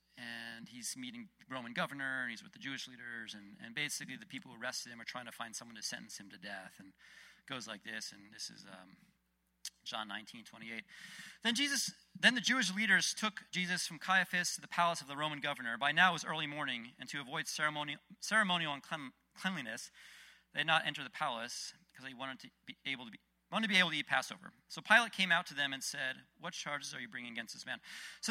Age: 40-59